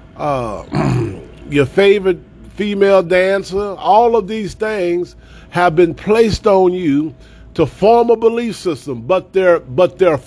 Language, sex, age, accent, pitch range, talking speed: English, male, 40-59, American, 170-215 Hz, 135 wpm